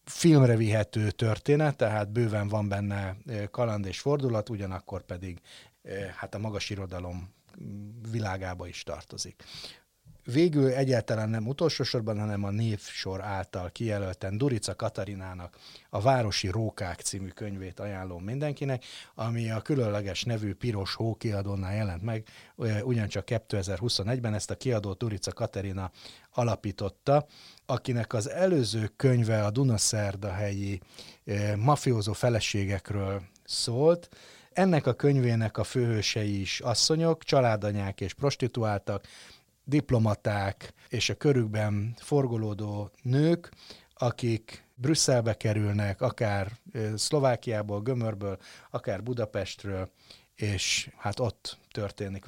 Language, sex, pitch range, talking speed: Hungarian, male, 100-125 Hz, 105 wpm